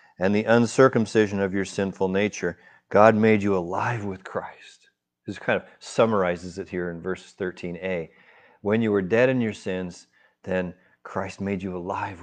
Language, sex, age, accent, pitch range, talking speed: English, male, 40-59, American, 95-115 Hz, 165 wpm